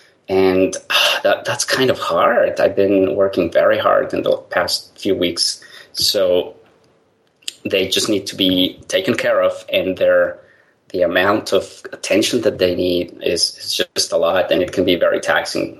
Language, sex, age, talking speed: English, male, 30-49, 175 wpm